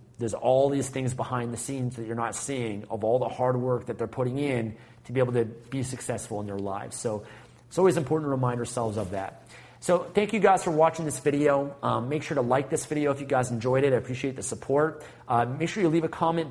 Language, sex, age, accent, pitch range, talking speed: English, male, 30-49, American, 125-155 Hz, 250 wpm